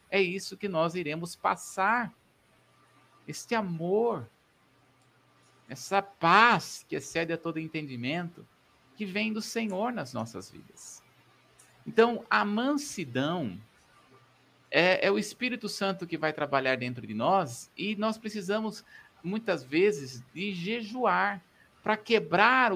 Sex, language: male, Portuguese